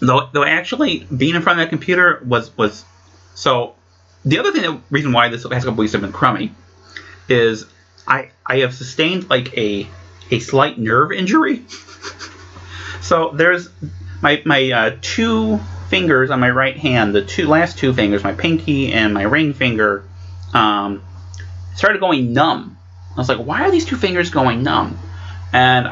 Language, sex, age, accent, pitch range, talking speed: English, male, 30-49, American, 95-145 Hz, 170 wpm